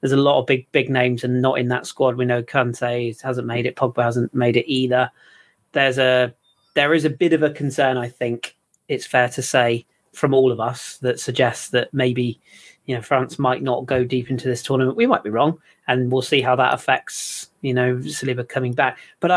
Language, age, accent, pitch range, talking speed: English, 30-49, British, 120-135 Hz, 225 wpm